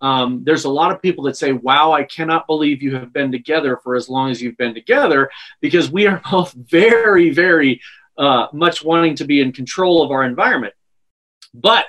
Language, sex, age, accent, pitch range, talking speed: English, male, 40-59, American, 155-195 Hz, 200 wpm